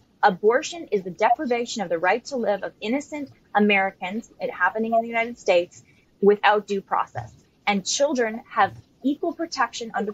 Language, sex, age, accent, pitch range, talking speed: English, female, 10-29, American, 185-245 Hz, 160 wpm